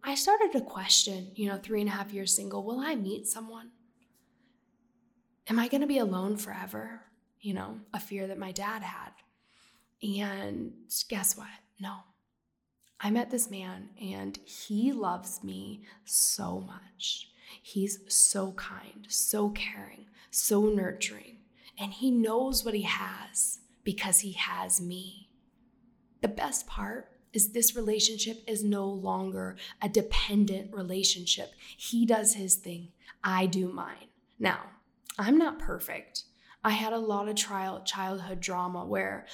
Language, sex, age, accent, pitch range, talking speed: English, female, 10-29, American, 190-230 Hz, 140 wpm